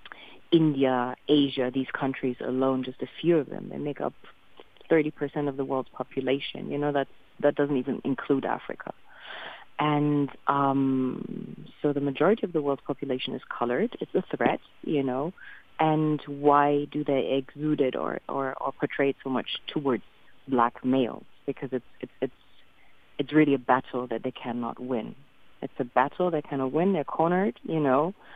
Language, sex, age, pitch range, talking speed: English, female, 30-49, 130-145 Hz, 170 wpm